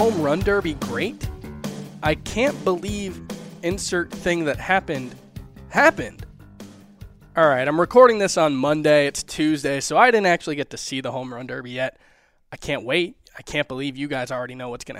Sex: male